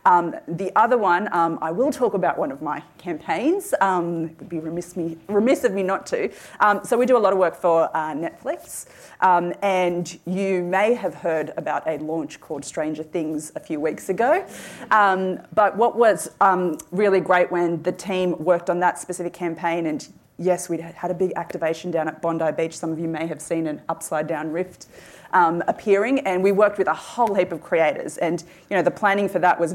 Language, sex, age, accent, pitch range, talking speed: English, female, 30-49, Australian, 165-185 Hz, 210 wpm